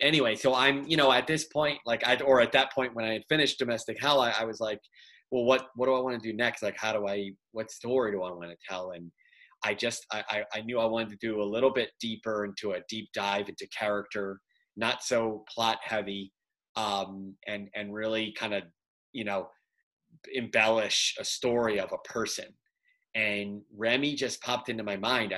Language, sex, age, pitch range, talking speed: English, male, 30-49, 105-120 Hz, 210 wpm